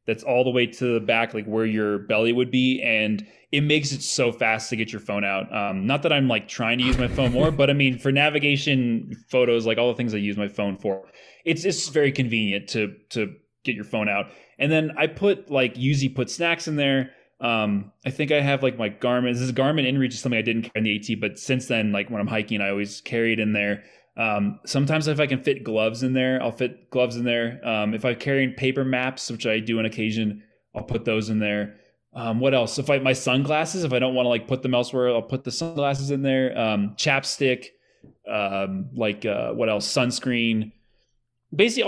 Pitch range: 110-140 Hz